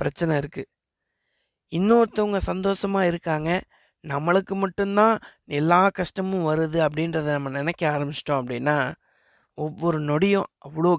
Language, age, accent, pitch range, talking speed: Tamil, 20-39, native, 150-190 Hz, 100 wpm